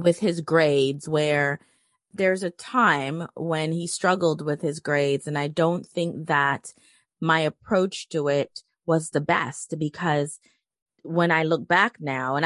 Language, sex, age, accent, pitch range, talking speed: English, female, 30-49, American, 150-195 Hz, 155 wpm